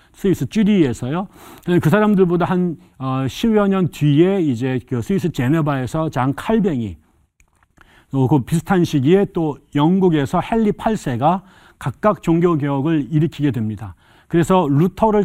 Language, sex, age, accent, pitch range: Korean, male, 40-59, native, 125-175 Hz